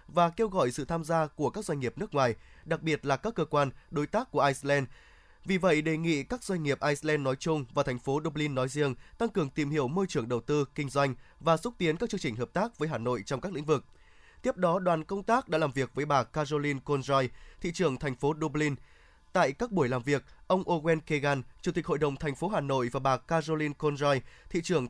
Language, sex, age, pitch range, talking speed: Vietnamese, male, 20-39, 135-170 Hz, 245 wpm